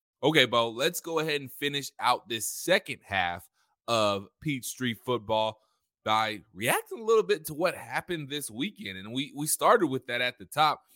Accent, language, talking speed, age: American, English, 185 wpm, 20-39